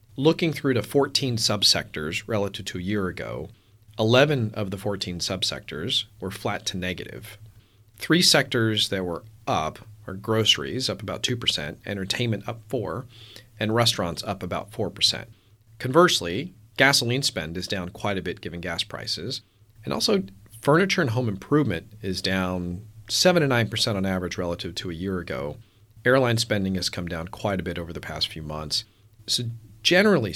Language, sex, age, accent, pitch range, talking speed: English, male, 40-59, American, 95-120 Hz, 160 wpm